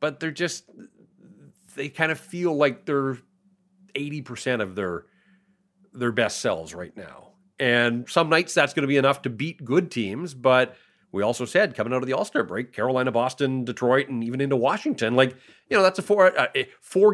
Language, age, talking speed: English, 30-49, 190 wpm